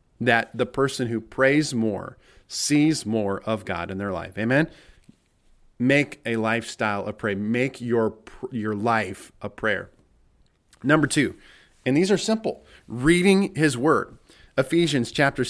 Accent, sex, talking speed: American, male, 140 wpm